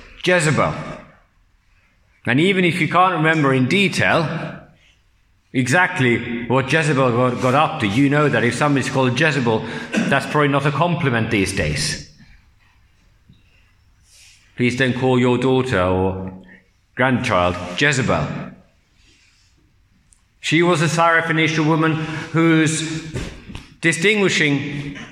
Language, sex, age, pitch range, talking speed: English, male, 50-69, 95-150 Hz, 105 wpm